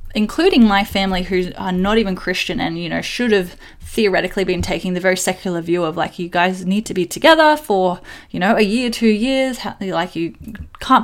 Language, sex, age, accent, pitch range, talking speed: English, female, 10-29, Australian, 175-230 Hz, 205 wpm